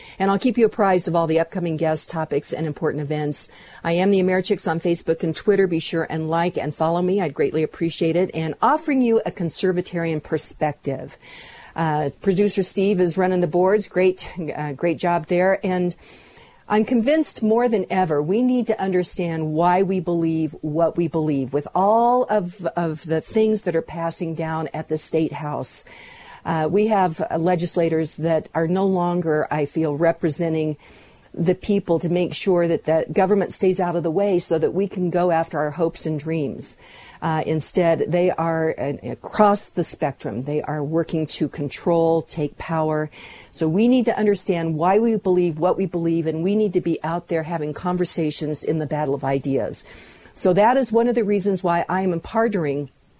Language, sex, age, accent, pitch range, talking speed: English, female, 50-69, American, 160-190 Hz, 190 wpm